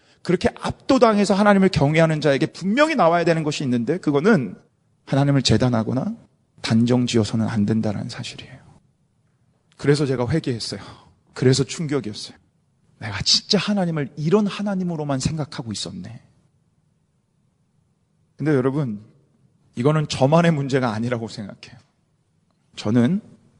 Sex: male